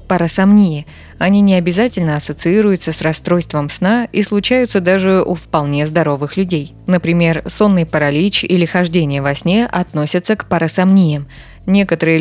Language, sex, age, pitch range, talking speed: Russian, female, 20-39, 155-190 Hz, 130 wpm